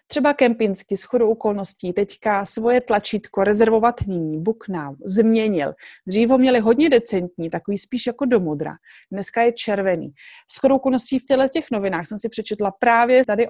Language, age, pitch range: Czech, 30-49, 195-245 Hz